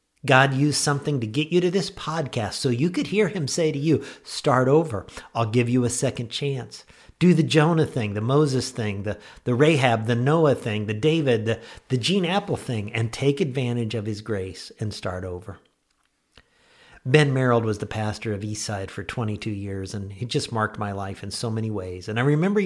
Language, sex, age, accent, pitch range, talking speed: English, male, 50-69, American, 105-140 Hz, 205 wpm